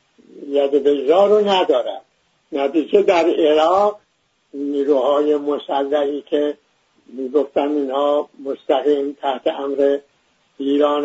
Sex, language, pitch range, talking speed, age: male, English, 145-185 Hz, 100 wpm, 60-79